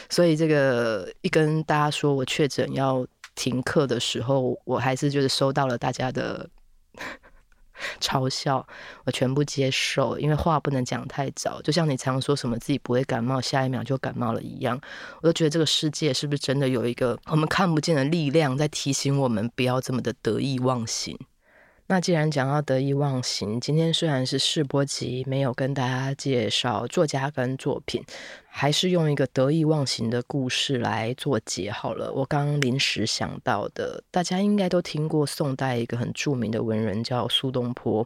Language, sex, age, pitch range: Chinese, female, 20-39, 125-155 Hz